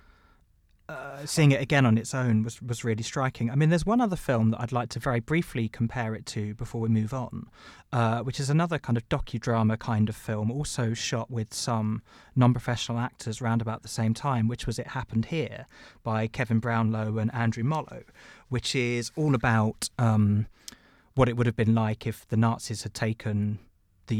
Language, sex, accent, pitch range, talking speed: English, male, British, 110-125 Hz, 195 wpm